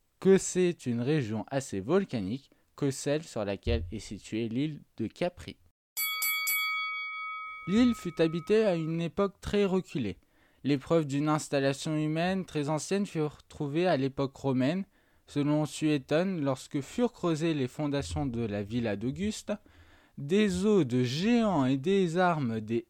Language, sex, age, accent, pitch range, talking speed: French, male, 20-39, French, 130-180 Hz, 140 wpm